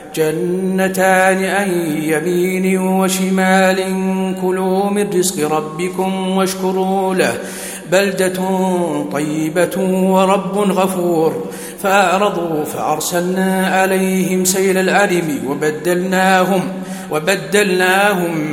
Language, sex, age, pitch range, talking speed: Arabic, male, 50-69, 175-190 Hz, 70 wpm